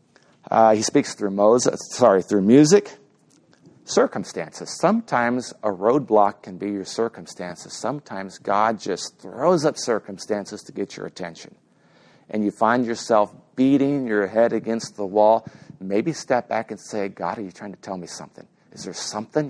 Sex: male